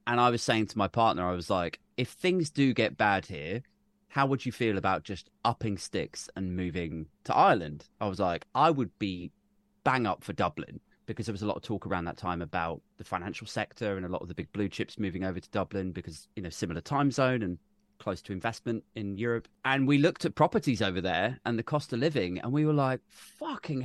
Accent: British